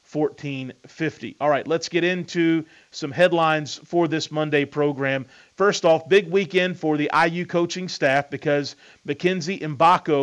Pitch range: 135-160 Hz